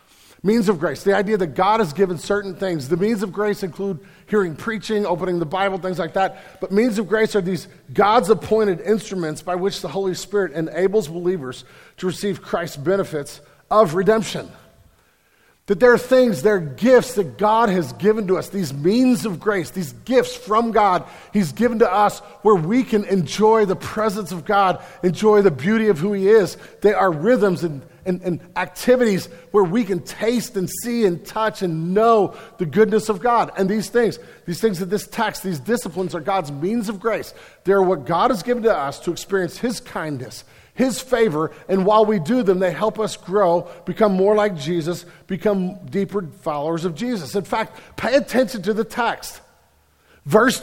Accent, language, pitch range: American, English, 185-225 Hz